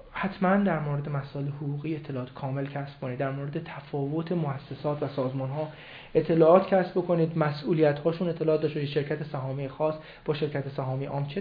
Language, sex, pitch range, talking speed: Persian, male, 145-175 Hz, 165 wpm